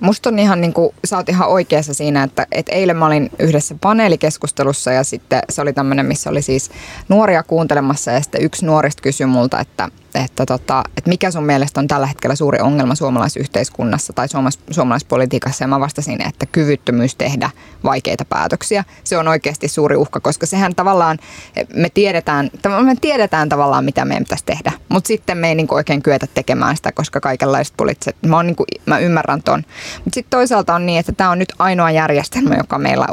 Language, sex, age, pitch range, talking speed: Finnish, female, 20-39, 140-170 Hz, 185 wpm